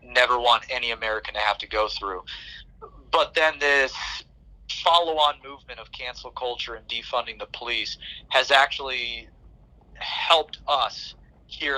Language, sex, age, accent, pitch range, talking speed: English, male, 30-49, American, 110-130 Hz, 140 wpm